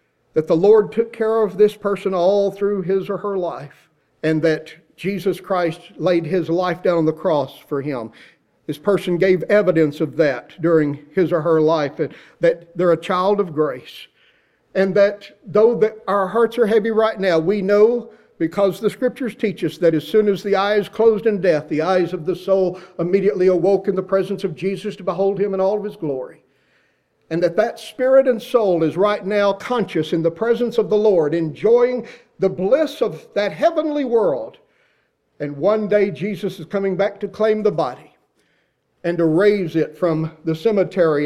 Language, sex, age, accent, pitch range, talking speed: English, male, 50-69, American, 175-210 Hz, 190 wpm